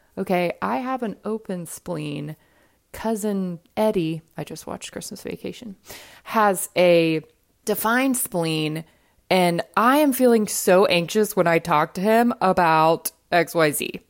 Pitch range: 160-235 Hz